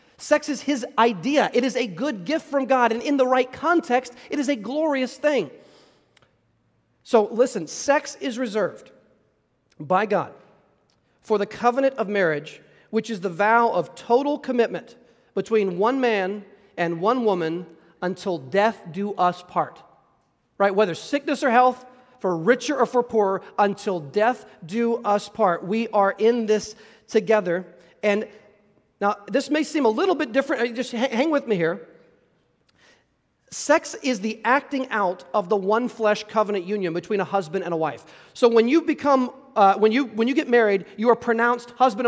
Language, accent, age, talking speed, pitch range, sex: English, American, 40-59, 165 wpm, 210-255 Hz, male